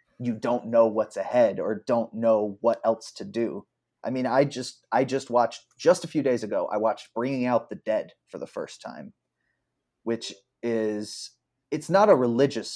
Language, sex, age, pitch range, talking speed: English, male, 30-49, 110-130 Hz, 190 wpm